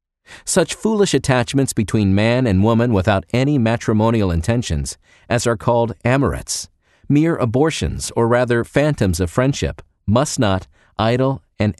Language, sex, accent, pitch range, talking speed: English, male, American, 95-130 Hz, 130 wpm